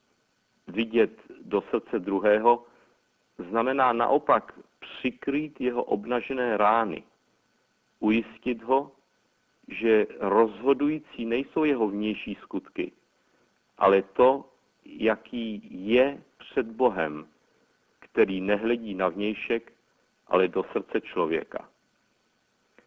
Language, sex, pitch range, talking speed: Czech, male, 105-130 Hz, 85 wpm